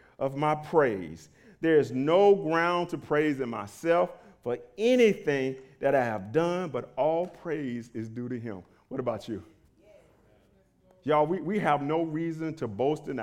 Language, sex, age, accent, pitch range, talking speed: English, male, 40-59, American, 135-175 Hz, 165 wpm